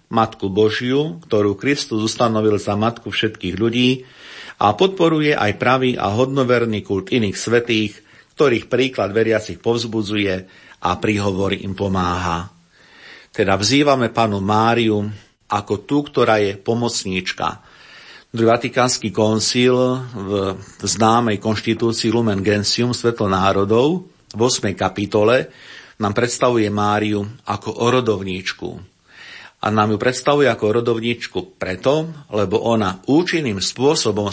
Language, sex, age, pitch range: Slovak, male, 50-69, 100-125 Hz